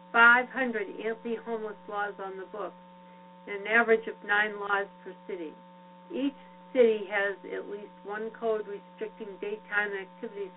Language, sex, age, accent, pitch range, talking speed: English, female, 60-79, American, 180-220 Hz, 130 wpm